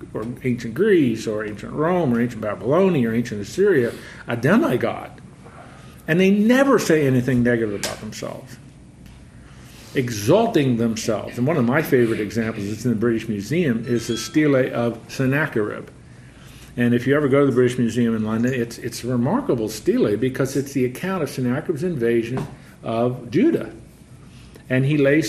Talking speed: 160 wpm